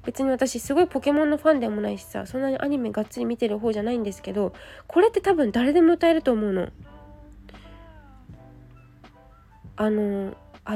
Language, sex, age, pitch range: Japanese, female, 20-39, 215-275 Hz